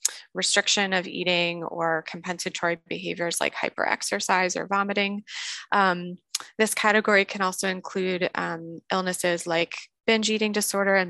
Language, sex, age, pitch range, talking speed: English, female, 20-39, 180-210 Hz, 125 wpm